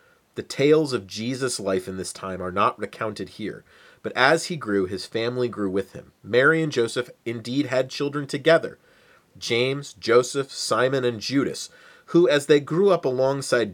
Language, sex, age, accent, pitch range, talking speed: English, male, 30-49, American, 115-155 Hz, 170 wpm